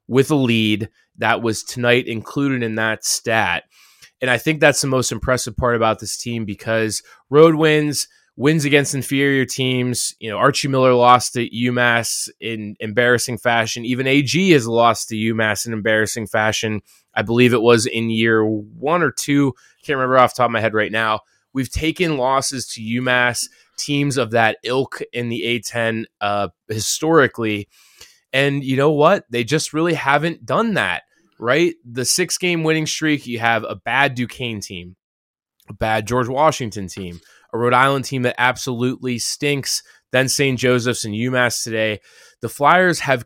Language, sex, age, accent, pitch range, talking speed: English, male, 20-39, American, 115-135 Hz, 170 wpm